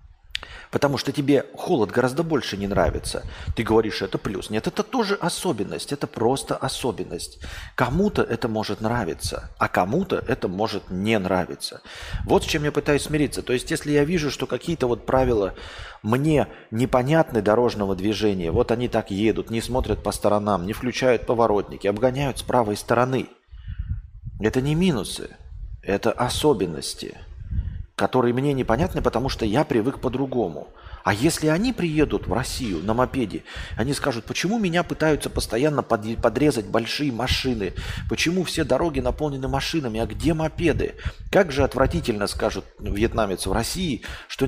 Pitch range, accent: 105-140 Hz, native